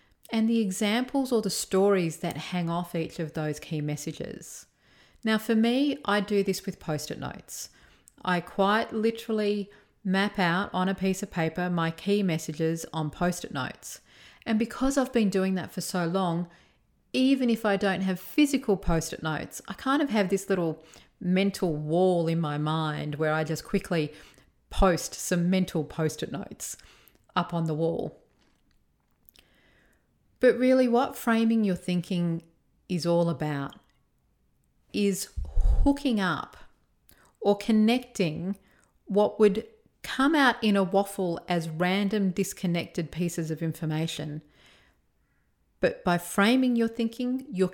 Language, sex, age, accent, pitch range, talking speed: English, female, 40-59, Australian, 165-210 Hz, 140 wpm